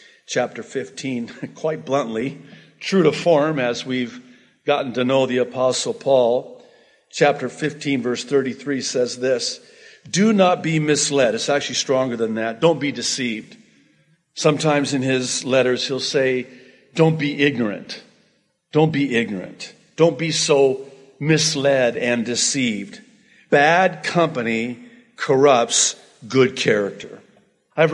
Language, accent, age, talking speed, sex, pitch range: English, American, 50-69, 120 wpm, male, 120-155 Hz